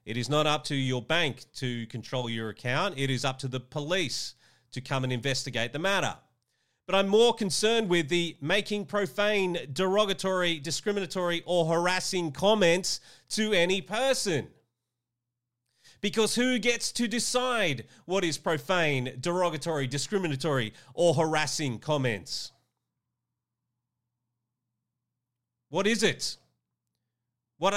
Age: 40-59